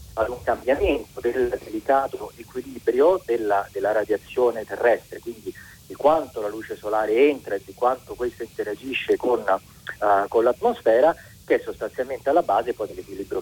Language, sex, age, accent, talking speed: Italian, male, 40-59, native, 150 wpm